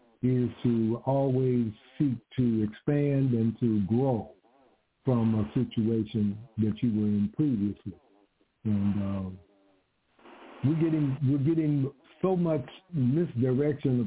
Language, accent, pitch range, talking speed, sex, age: English, American, 115-140 Hz, 110 wpm, male, 60-79